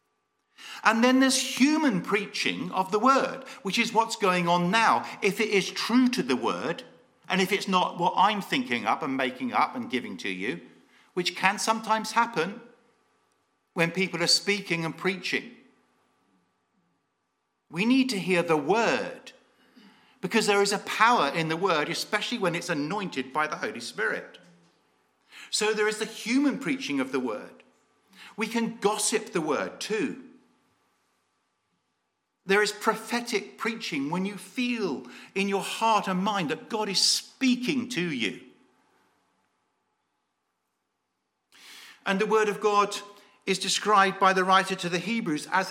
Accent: British